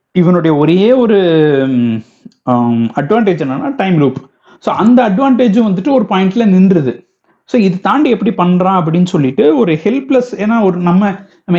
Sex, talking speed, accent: male, 140 wpm, native